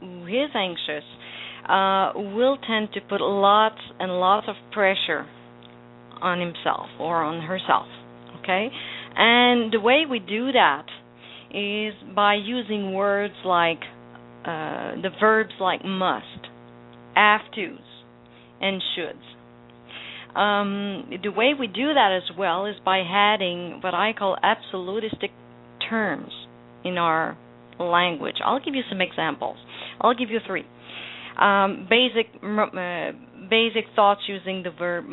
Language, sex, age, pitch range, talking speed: English, female, 50-69, 150-220 Hz, 130 wpm